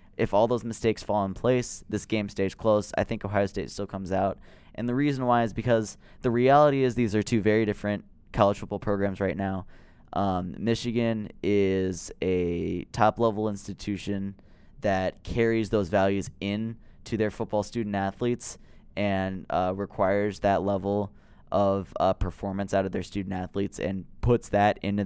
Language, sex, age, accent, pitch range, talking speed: English, male, 10-29, American, 95-105 Hz, 165 wpm